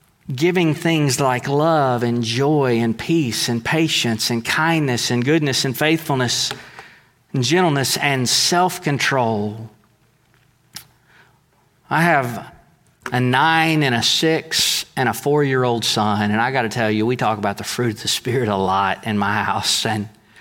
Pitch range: 115-150 Hz